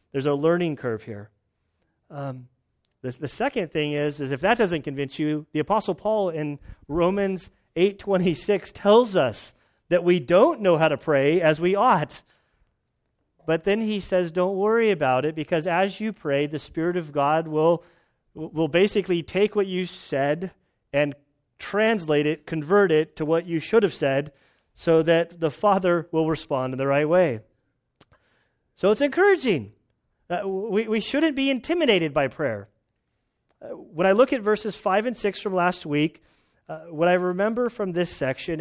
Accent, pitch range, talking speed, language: American, 145-190 Hz, 170 wpm, English